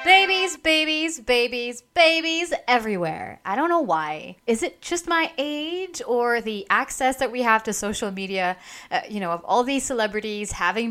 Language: English